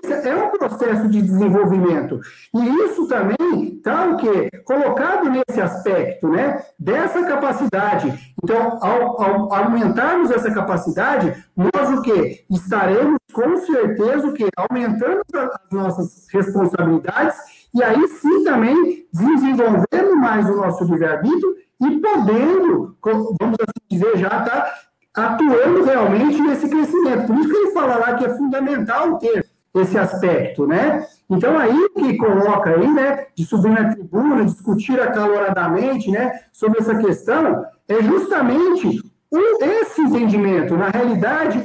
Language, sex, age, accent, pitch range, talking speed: Portuguese, male, 50-69, Brazilian, 205-300 Hz, 130 wpm